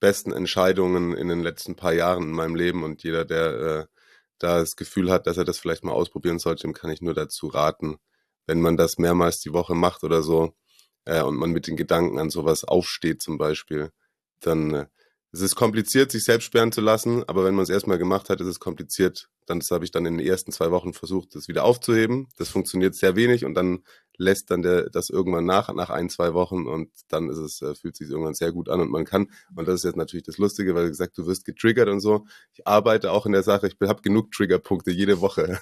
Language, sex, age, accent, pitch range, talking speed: German, male, 30-49, German, 85-105 Hz, 235 wpm